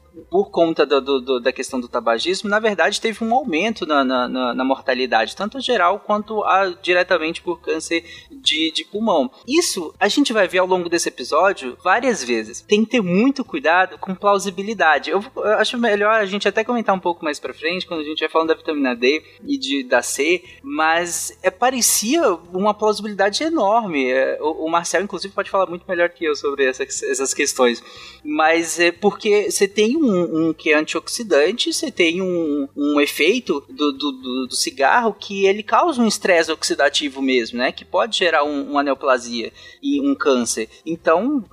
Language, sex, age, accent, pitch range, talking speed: Portuguese, male, 20-39, Brazilian, 160-240 Hz, 190 wpm